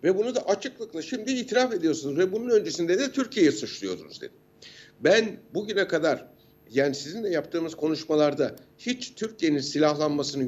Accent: native